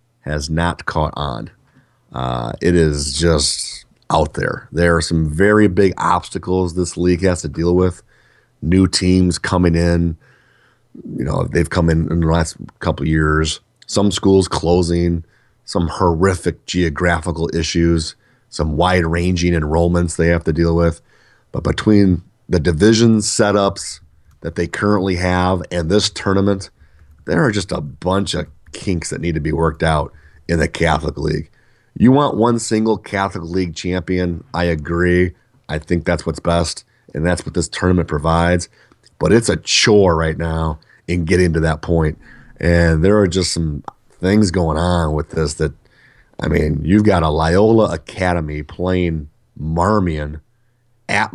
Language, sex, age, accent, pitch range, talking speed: English, male, 30-49, American, 80-95 Hz, 155 wpm